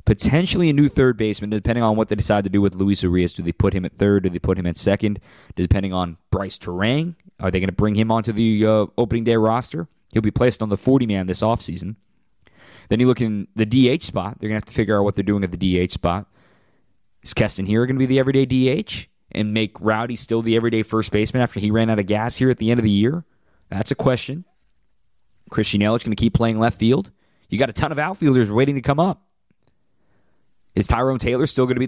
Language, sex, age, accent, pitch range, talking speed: English, male, 20-39, American, 105-130 Hz, 245 wpm